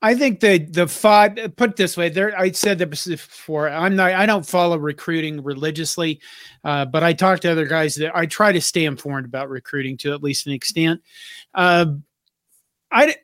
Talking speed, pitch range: 195 wpm, 155-195 Hz